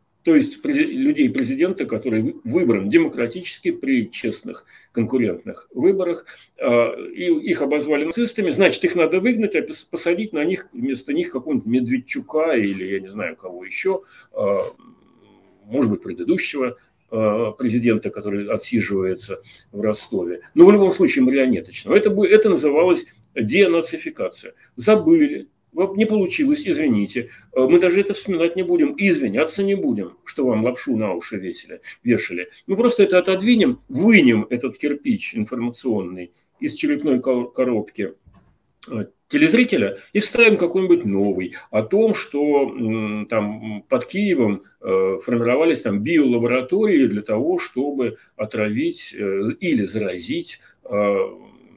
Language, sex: Ukrainian, male